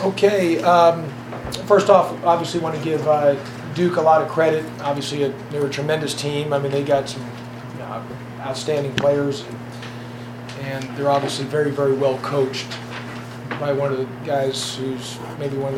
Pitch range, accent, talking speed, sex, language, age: 125-150 Hz, American, 175 wpm, male, English, 40-59